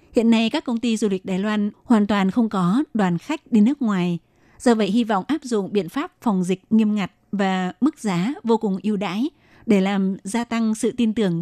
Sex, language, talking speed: female, Vietnamese, 230 wpm